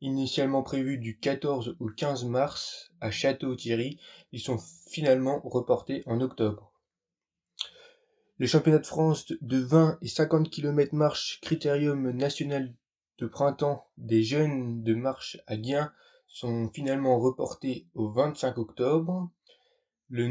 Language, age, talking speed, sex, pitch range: French, 20-39, 125 wpm, male, 120-155 Hz